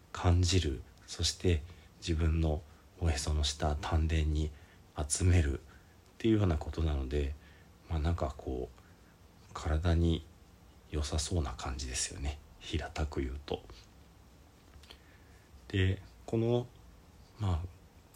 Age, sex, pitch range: 40-59, male, 75-90 Hz